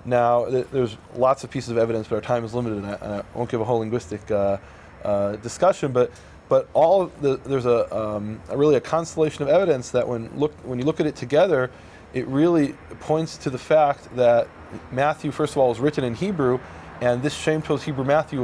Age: 20-39